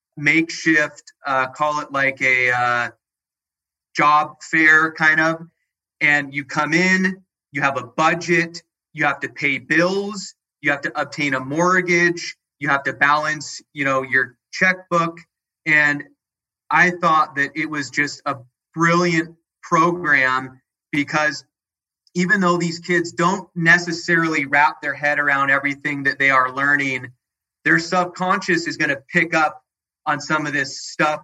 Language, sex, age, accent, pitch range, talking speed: English, male, 30-49, American, 135-165 Hz, 145 wpm